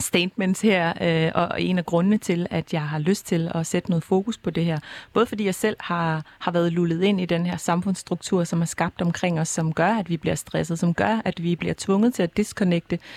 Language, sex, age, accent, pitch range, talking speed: Danish, female, 30-49, native, 170-195 Hz, 235 wpm